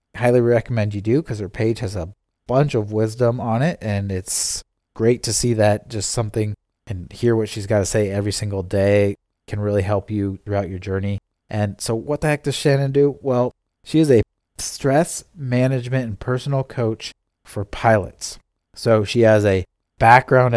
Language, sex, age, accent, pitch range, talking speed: English, male, 30-49, American, 100-130 Hz, 185 wpm